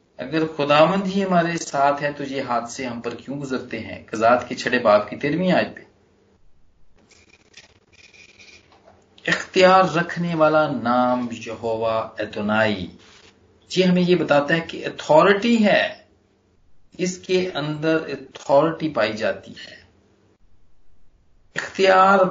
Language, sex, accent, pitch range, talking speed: Hindi, male, native, 120-185 Hz, 120 wpm